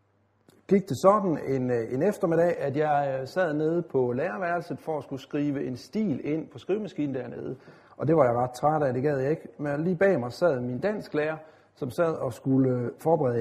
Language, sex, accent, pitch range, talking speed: Danish, male, native, 130-180 Hz, 205 wpm